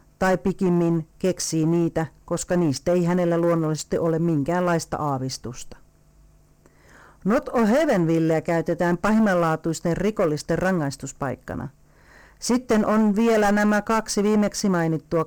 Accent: native